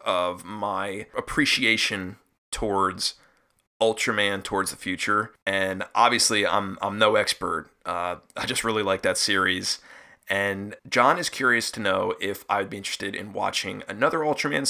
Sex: male